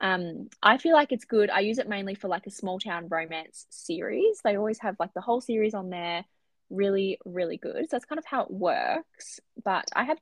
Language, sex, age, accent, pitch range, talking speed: English, female, 20-39, Australian, 185-235 Hz, 230 wpm